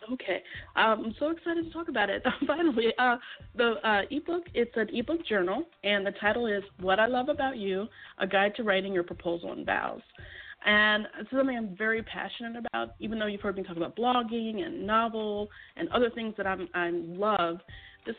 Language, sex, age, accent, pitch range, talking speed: English, female, 30-49, American, 190-245 Hz, 190 wpm